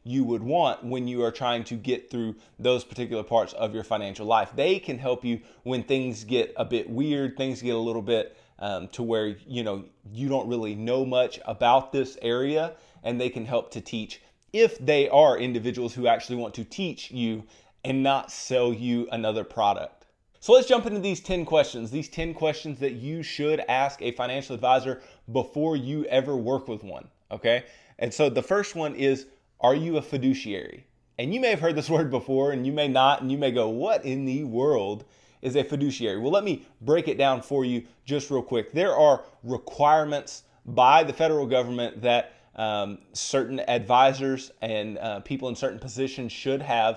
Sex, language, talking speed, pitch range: male, English, 195 wpm, 120-140 Hz